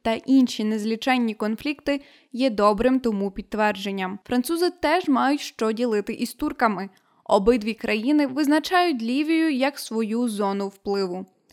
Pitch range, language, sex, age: 220-280 Hz, Ukrainian, female, 20-39